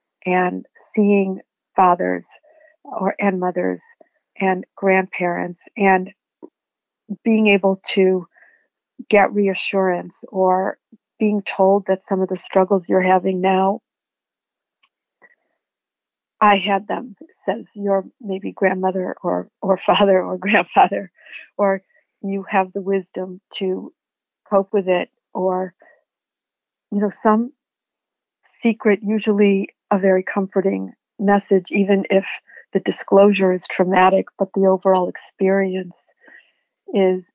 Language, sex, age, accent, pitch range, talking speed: English, female, 50-69, American, 185-205 Hz, 110 wpm